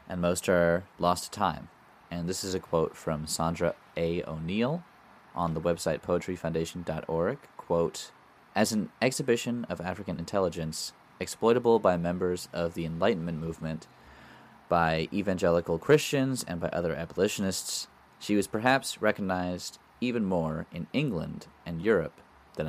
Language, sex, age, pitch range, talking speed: English, male, 20-39, 80-95 Hz, 135 wpm